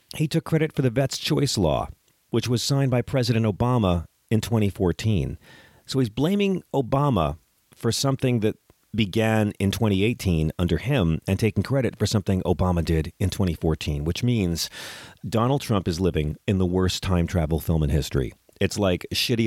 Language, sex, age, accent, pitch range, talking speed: English, male, 40-59, American, 85-115 Hz, 165 wpm